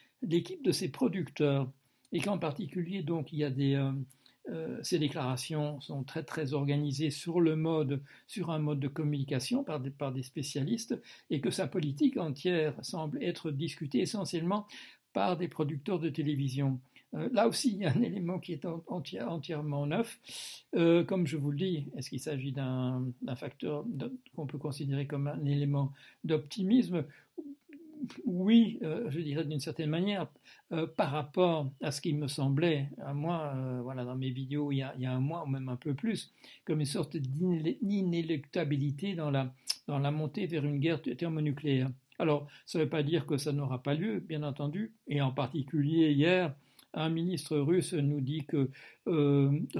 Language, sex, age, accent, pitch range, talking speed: French, male, 60-79, French, 140-170 Hz, 180 wpm